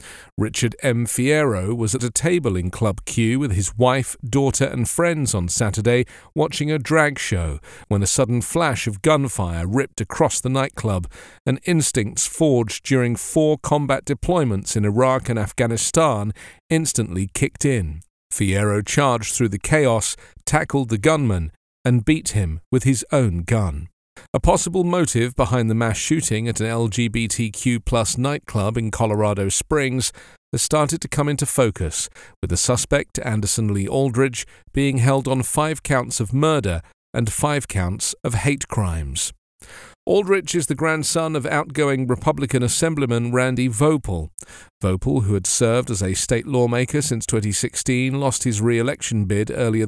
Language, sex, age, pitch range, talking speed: English, male, 40-59, 105-140 Hz, 150 wpm